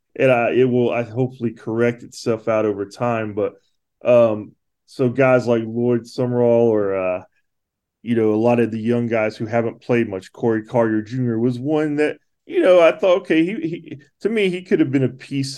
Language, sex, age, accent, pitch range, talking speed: English, male, 20-39, American, 110-130 Hz, 205 wpm